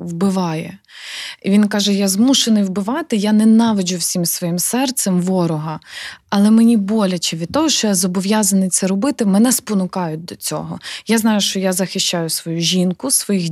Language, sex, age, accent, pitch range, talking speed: Ukrainian, female, 20-39, native, 180-215 Hz, 155 wpm